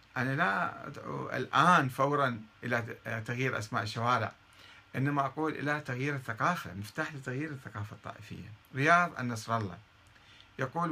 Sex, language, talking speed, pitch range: male, Arabic, 120 wpm, 105-140 Hz